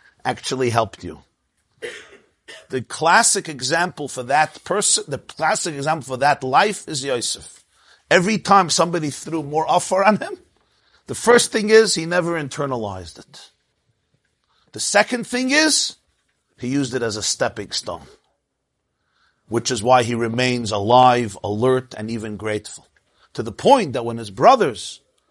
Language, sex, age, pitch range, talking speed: English, male, 50-69, 115-165 Hz, 145 wpm